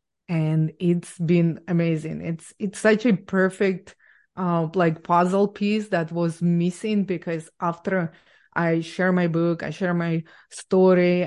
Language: English